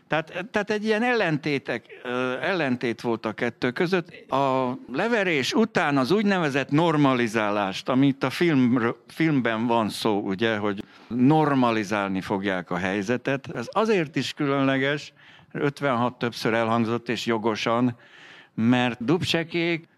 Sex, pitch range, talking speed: male, 115-165 Hz, 115 wpm